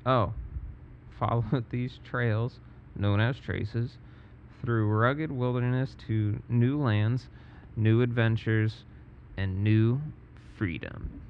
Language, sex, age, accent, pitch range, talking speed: English, male, 30-49, American, 110-125 Hz, 95 wpm